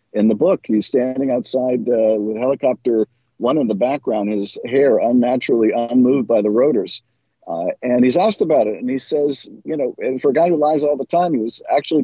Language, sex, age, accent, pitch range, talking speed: English, male, 50-69, American, 120-160 Hz, 215 wpm